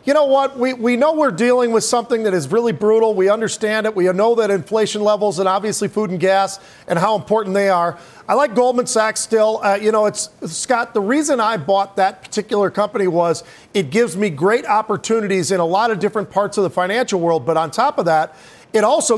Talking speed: 225 wpm